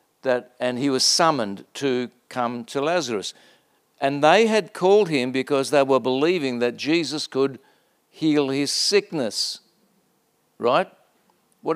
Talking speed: 135 wpm